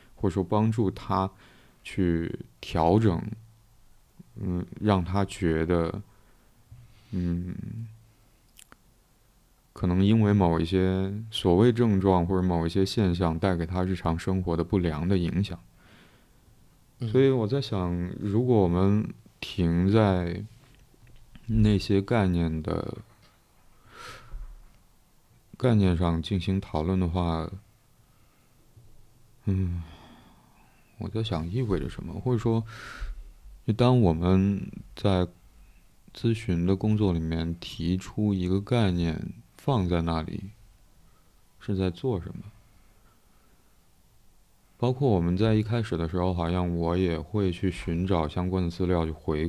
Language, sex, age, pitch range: Chinese, male, 20-39, 85-110 Hz